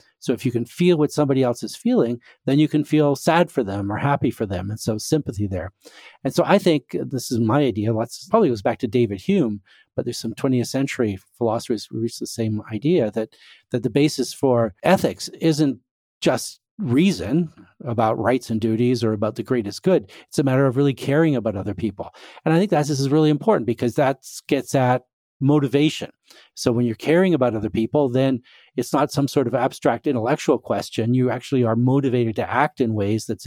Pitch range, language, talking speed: 115-150 Hz, English, 210 wpm